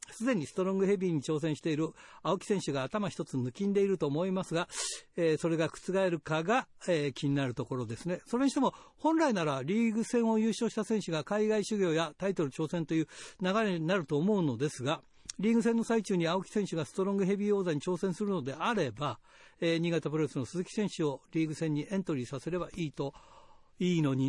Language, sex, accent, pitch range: Japanese, male, native, 145-200 Hz